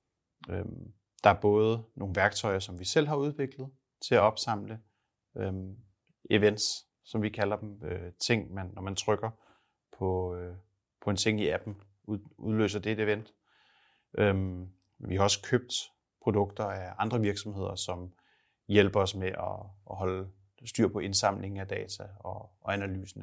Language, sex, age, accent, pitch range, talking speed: Danish, male, 30-49, native, 95-115 Hz, 160 wpm